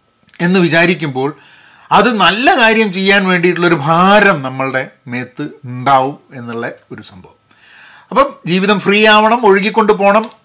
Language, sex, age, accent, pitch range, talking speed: Malayalam, male, 40-59, native, 155-215 Hz, 115 wpm